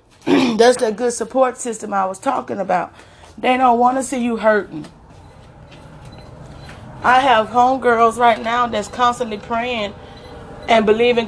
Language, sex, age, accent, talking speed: English, female, 30-49, American, 140 wpm